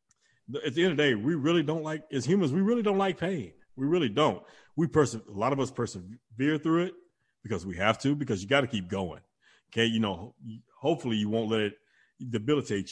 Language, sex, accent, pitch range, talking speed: English, male, American, 115-140 Hz, 225 wpm